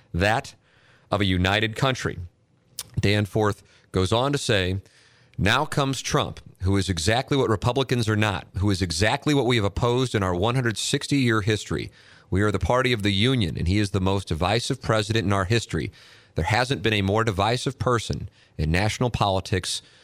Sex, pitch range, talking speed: male, 95-125 Hz, 175 wpm